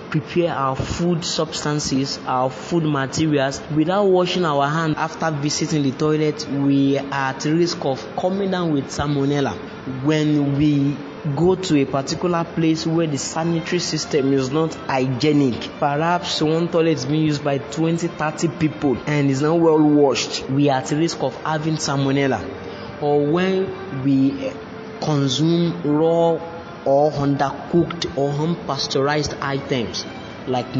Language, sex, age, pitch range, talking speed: English, male, 20-39, 140-165 Hz, 135 wpm